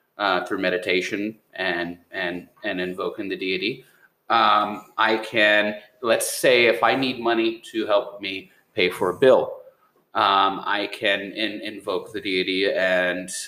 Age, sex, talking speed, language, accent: 30-49, male, 145 wpm, English, American